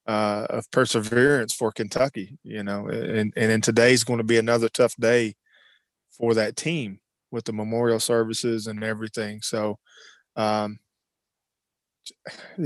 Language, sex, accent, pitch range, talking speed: English, male, American, 110-130 Hz, 135 wpm